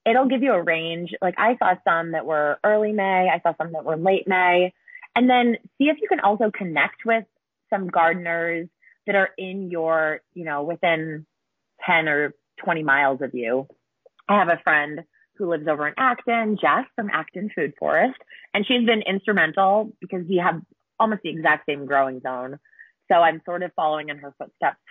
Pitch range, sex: 155-215 Hz, female